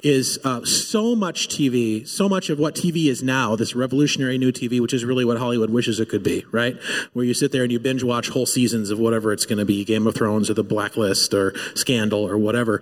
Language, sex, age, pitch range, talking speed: English, male, 30-49, 120-150 Hz, 245 wpm